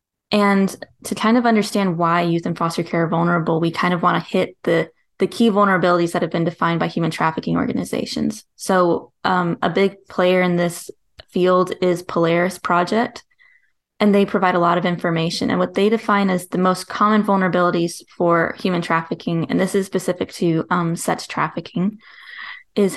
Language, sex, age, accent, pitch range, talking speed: English, female, 20-39, American, 175-205 Hz, 180 wpm